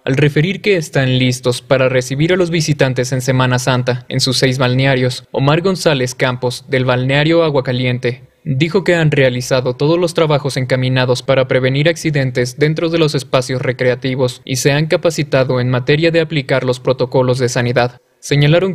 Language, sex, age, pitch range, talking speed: Spanish, male, 20-39, 125-150 Hz, 165 wpm